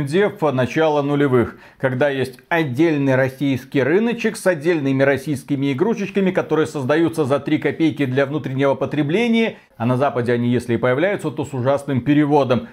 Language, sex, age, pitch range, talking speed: Russian, male, 40-59, 130-160 Hz, 145 wpm